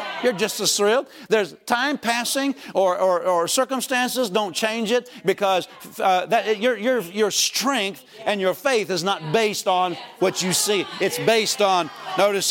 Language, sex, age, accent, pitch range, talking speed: English, male, 50-69, American, 175-220 Hz, 170 wpm